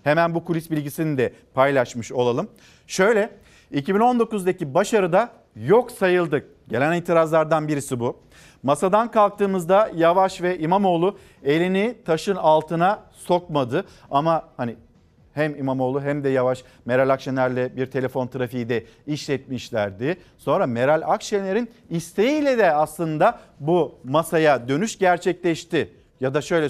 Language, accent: Turkish, native